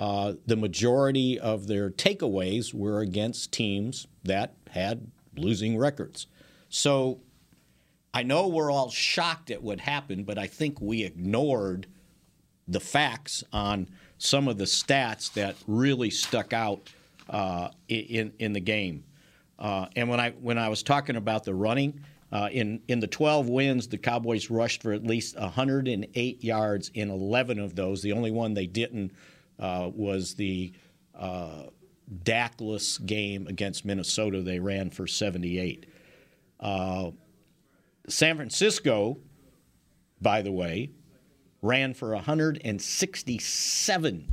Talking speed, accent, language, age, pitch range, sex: 135 wpm, American, English, 50-69, 100-125 Hz, male